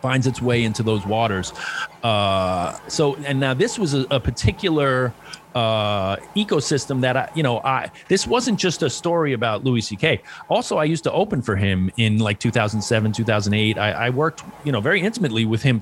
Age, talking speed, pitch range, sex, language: 30-49, 190 wpm, 110-135 Hz, male, English